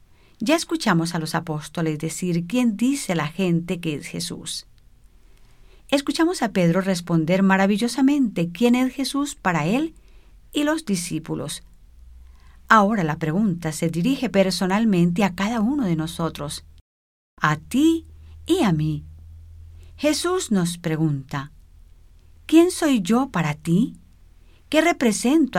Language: English